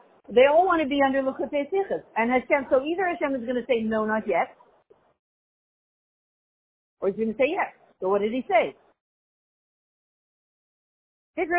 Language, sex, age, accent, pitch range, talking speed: English, female, 50-69, American, 215-280 Hz, 165 wpm